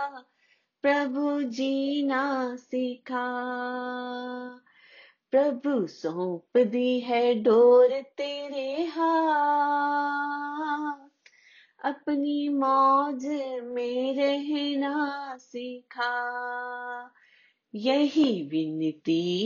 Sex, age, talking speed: female, 30-49, 50 wpm